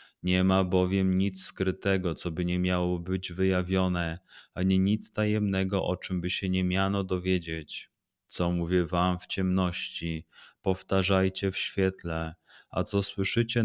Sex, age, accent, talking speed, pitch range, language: male, 30-49, native, 140 wpm, 85-95 Hz, Polish